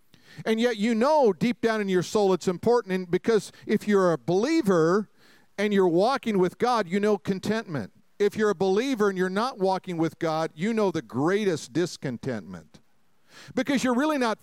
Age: 50-69